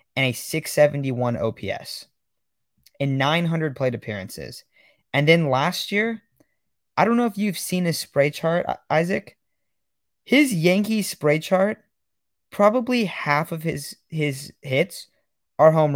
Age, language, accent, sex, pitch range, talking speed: 20-39, English, American, male, 125-165 Hz, 130 wpm